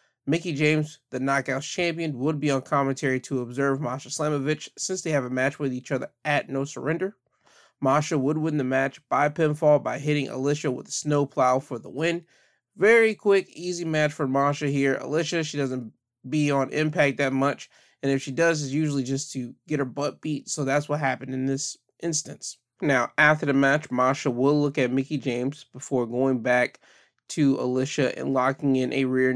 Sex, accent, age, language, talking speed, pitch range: male, American, 20-39, English, 195 wpm, 130-150 Hz